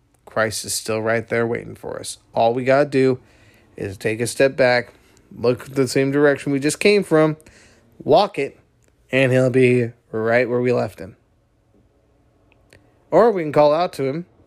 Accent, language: American, English